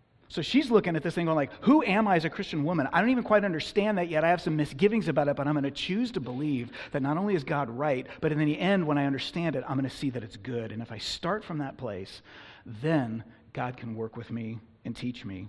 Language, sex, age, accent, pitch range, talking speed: English, male, 30-49, American, 125-170 Hz, 280 wpm